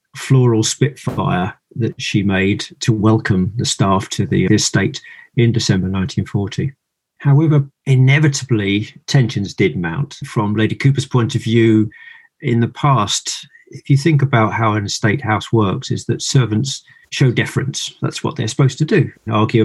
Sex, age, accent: male, 40-59, British